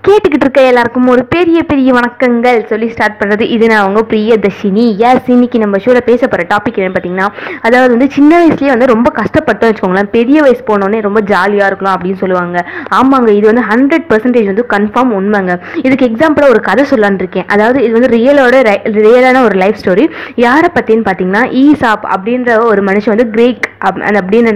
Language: Tamil